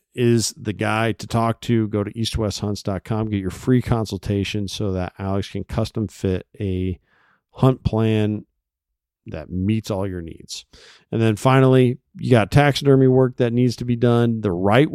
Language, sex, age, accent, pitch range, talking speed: English, male, 50-69, American, 95-115 Hz, 165 wpm